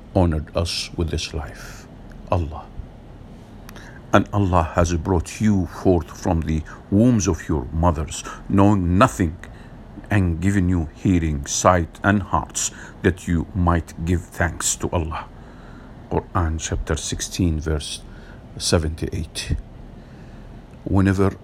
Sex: male